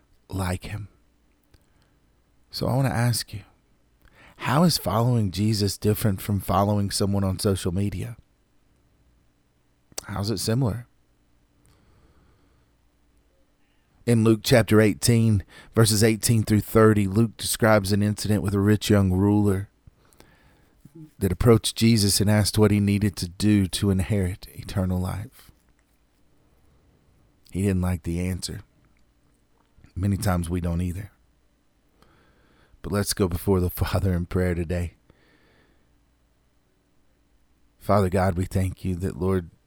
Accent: American